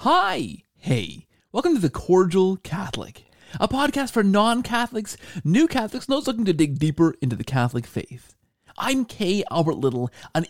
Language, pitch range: English, 150-225 Hz